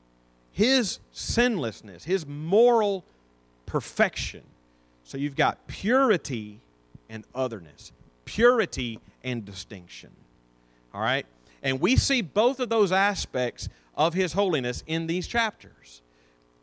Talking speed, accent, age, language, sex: 105 wpm, American, 40-59, English, male